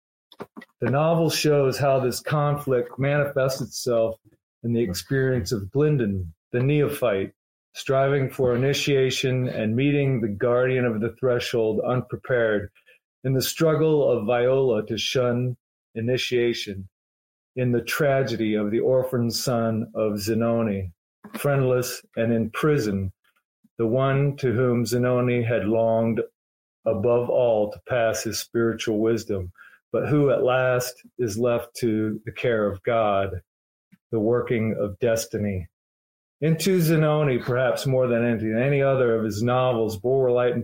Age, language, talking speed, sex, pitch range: 40-59, English, 130 wpm, male, 110-130 Hz